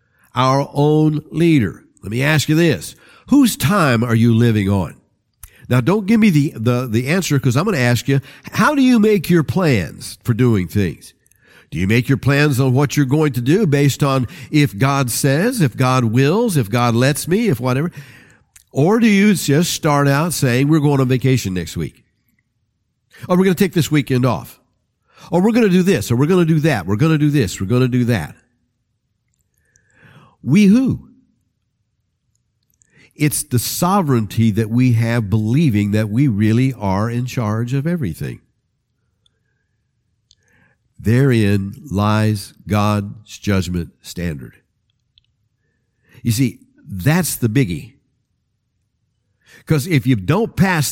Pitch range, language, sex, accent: 110-150 Hz, English, male, American